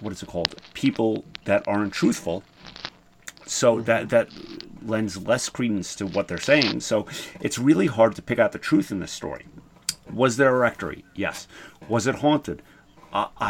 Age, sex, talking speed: 40-59, male, 175 wpm